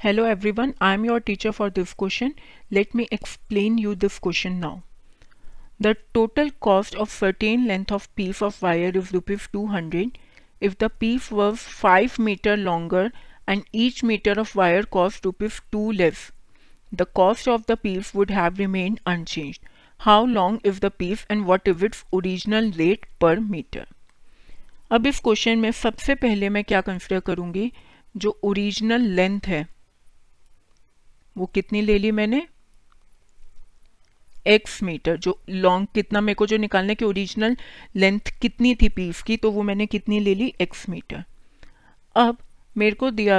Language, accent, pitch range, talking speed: Hindi, native, 185-225 Hz, 160 wpm